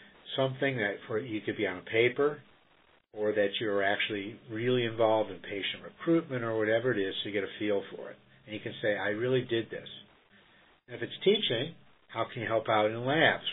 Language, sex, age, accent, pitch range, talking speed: English, male, 50-69, American, 105-125 Hz, 215 wpm